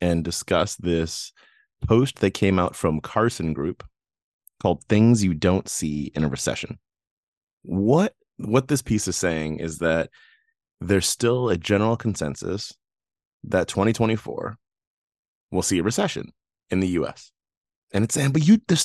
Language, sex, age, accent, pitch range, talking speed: English, male, 30-49, American, 95-125 Hz, 145 wpm